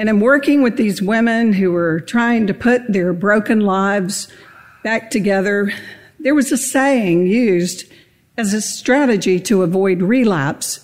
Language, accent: English, American